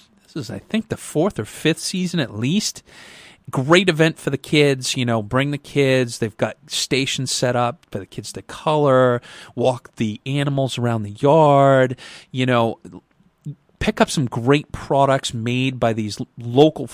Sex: male